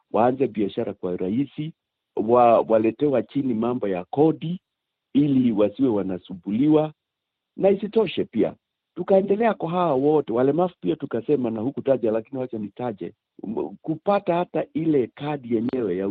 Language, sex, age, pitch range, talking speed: Swahili, male, 50-69, 115-165 Hz, 140 wpm